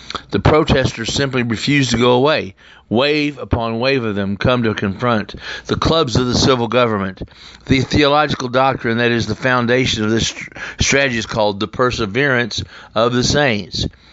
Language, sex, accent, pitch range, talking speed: English, male, American, 105-130 Hz, 160 wpm